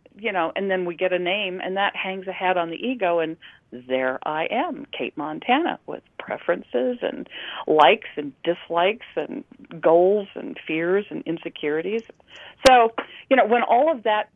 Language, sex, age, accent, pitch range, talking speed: English, female, 50-69, American, 175-225 Hz, 170 wpm